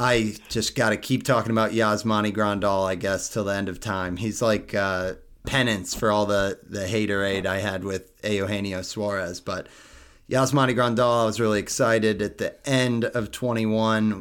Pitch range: 100-115 Hz